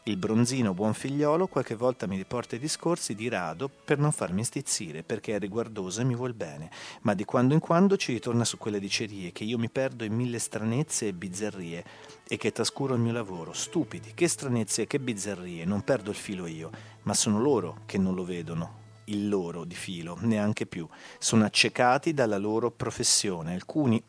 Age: 40-59